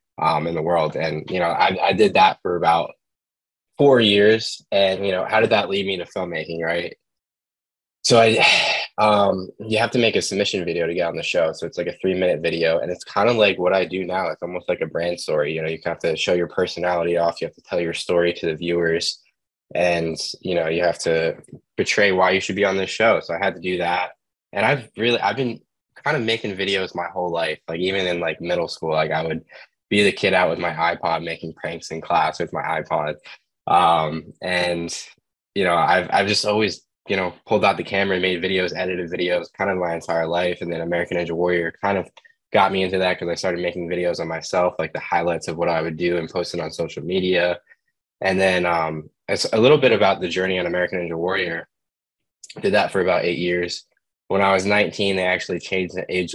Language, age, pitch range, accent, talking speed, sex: English, 10-29, 85-95 Hz, American, 235 wpm, male